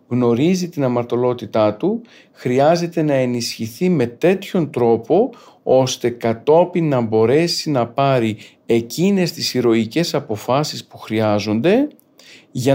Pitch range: 120-165 Hz